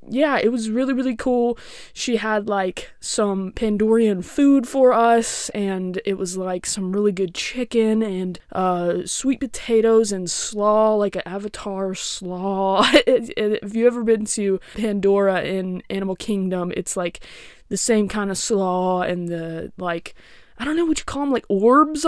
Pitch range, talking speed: 190-230 Hz, 165 wpm